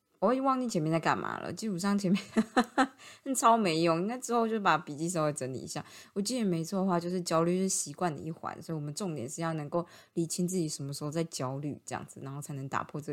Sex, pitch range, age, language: female, 160-215 Hz, 20-39, Chinese